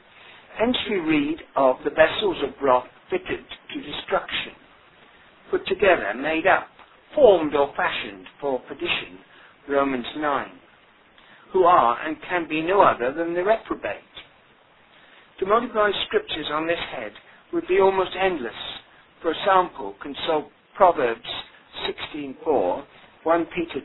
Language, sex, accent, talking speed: English, male, British, 125 wpm